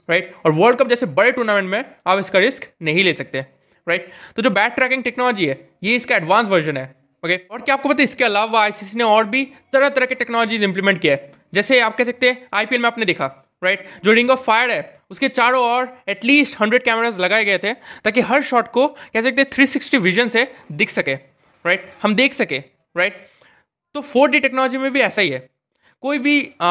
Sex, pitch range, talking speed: male, 185-260 Hz, 210 wpm